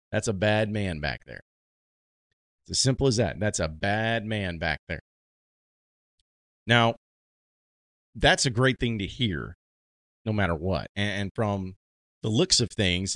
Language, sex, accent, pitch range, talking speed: English, male, American, 80-110 Hz, 150 wpm